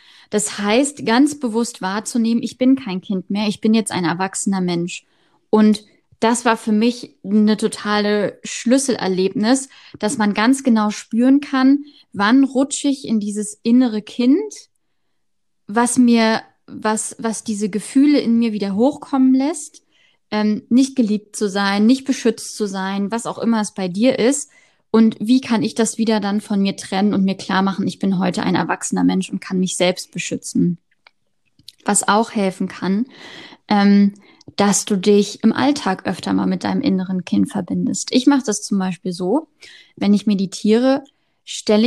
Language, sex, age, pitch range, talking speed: German, female, 20-39, 200-245 Hz, 165 wpm